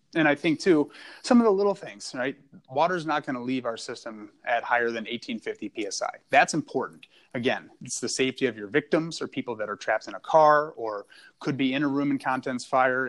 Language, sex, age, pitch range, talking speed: English, male, 30-49, 110-145 Hz, 220 wpm